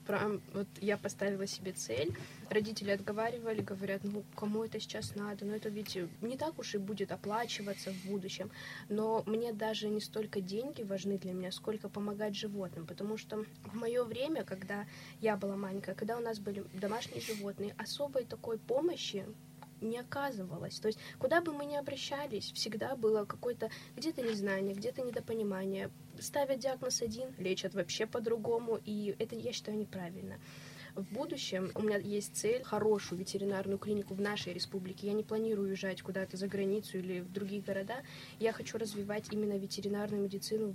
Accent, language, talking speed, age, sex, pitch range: native, Russian, 165 wpm, 10-29, female, 195-225 Hz